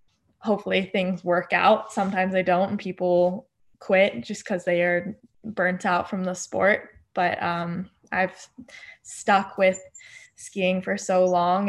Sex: female